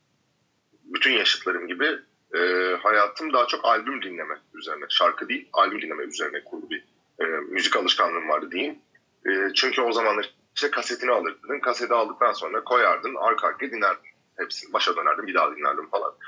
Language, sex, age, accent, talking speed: Turkish, male, 30-49, native, 155 wpm